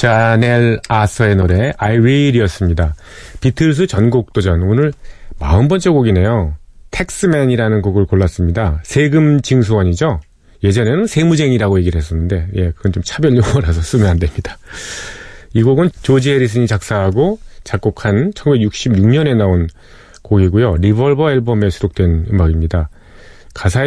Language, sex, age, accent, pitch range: Korean, male, 40-59, native, 90-130 Hz